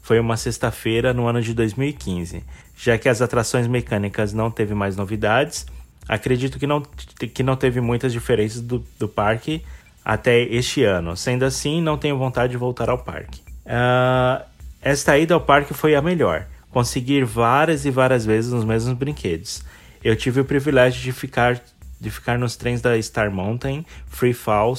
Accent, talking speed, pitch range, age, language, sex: Brazilian, 170 wpm, 105-130 Hz, 20-39, Portuguese, male